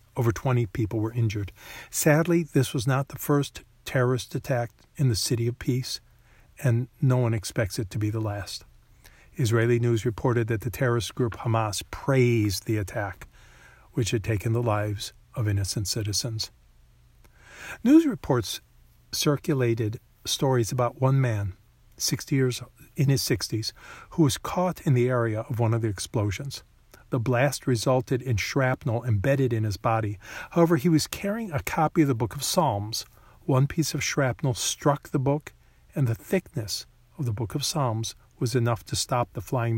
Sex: male